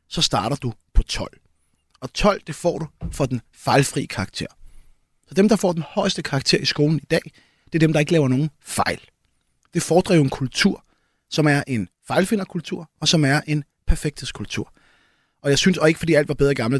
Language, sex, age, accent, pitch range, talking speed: Danish, male, 30-49, native, 135-170 Hz, 205 wpm